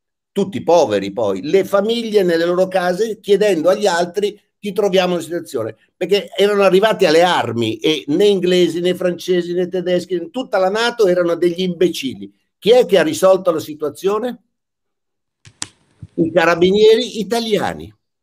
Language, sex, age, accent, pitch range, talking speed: Italian, male, 60-79, native, 135-220 Hz, 145 wpm